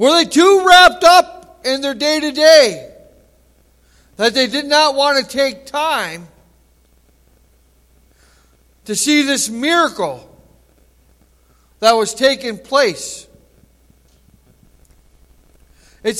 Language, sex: English, male